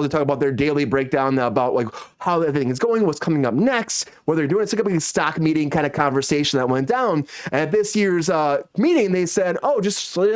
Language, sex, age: English, male, 30-49